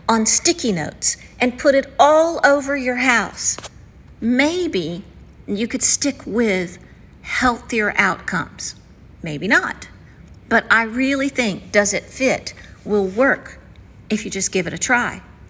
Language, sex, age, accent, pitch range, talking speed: English, female, 50-69, American, 185-255 Hz, 135 wpm